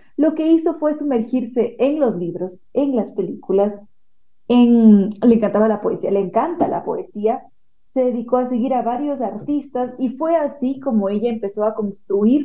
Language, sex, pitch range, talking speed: Spanish, female, 210-270 Hz, 170 wpm